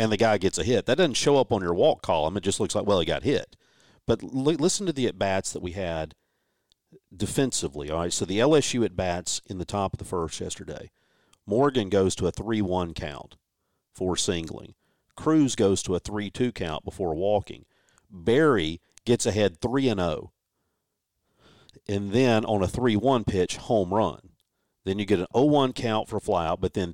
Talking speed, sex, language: 185 wpm, male, English